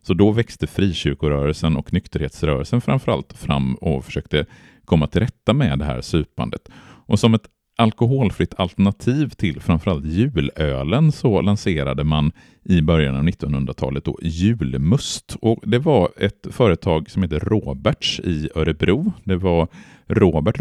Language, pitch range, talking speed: Swedish, 75-110 Hz, 135 wpm